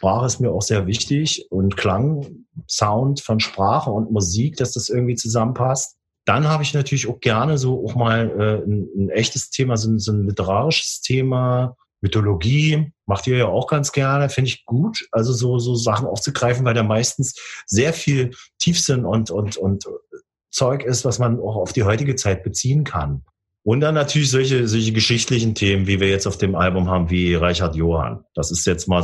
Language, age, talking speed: German, 40-59, 190 wpm